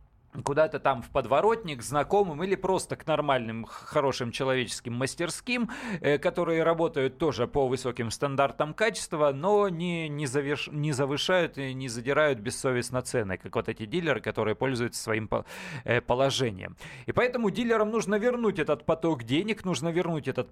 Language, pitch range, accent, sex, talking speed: Russian, 130-185 Hz, native, male, 135 wpm